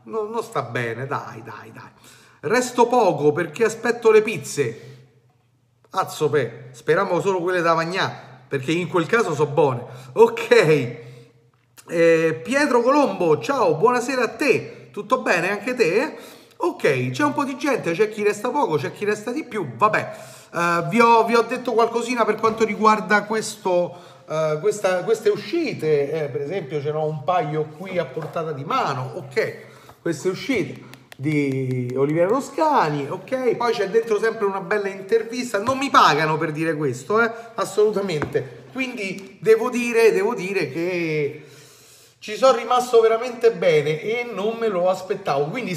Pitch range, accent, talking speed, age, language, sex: 155-230 Hz, native, 155 wpm, 40-59, Italian, male